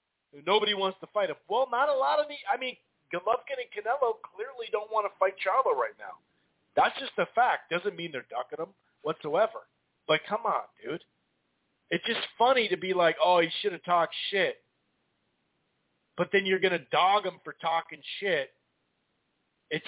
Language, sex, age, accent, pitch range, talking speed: English, male, 40-59, American, 150-205 Hz, 185 wpm